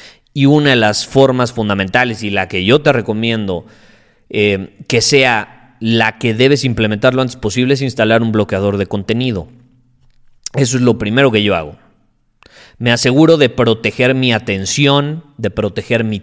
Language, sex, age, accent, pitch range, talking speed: Spanish, male, 30-49, Mexican, 105-135 Hz, 165 wpm